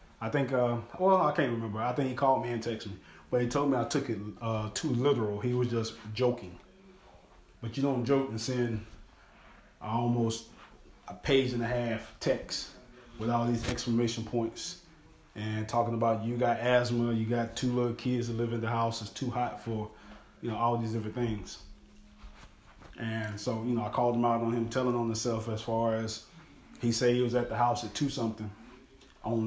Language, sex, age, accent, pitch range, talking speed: English, male, 20-39, American, 110-125 Hz, 205 wpm